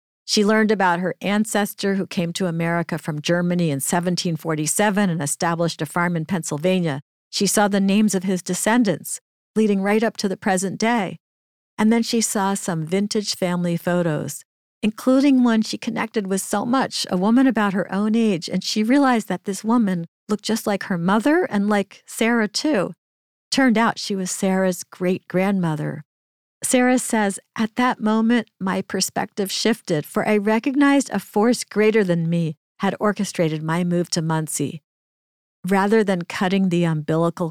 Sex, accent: female, American